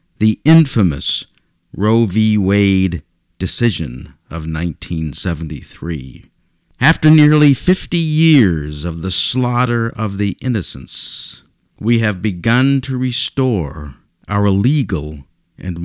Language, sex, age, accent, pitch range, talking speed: English, male, 50-69, American, 90-130 Hz, 100 wpm